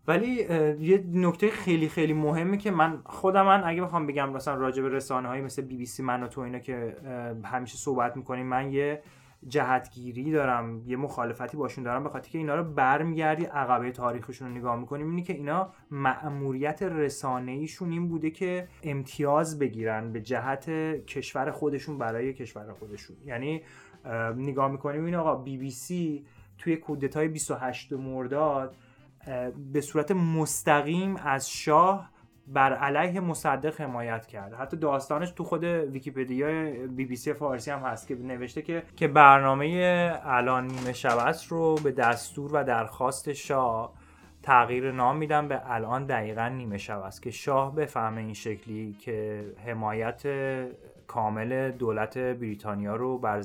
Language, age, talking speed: Persian, 20-39, 140 wpm